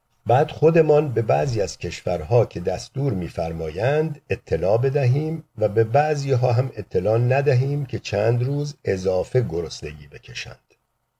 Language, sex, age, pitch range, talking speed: Persian, male, 50-69, 95-125 Hz, 125 wpm